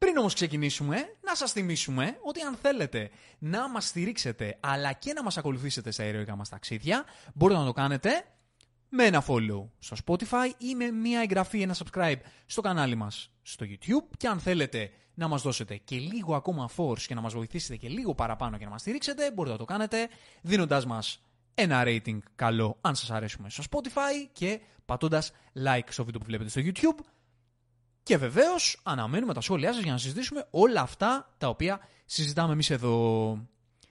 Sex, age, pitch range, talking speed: male, 20-39, 115-195 Hz, 180 wpm